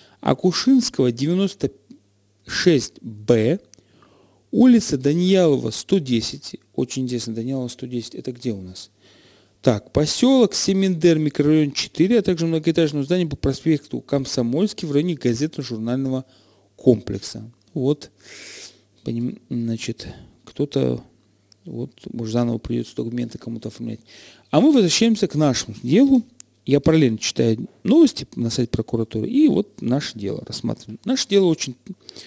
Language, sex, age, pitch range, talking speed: Russian, male, 40-59, 115-175 Hz, 110 wpm